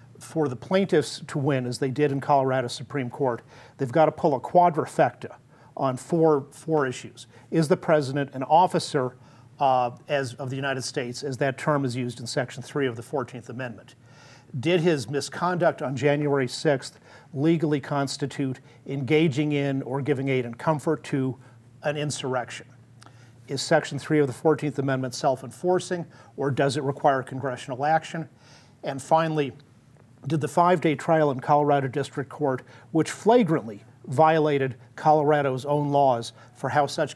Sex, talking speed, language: male, 155 wpm, English